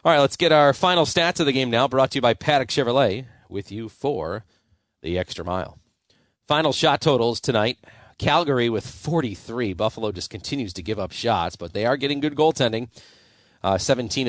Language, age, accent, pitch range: English, 40-59, American, 105-135 Hz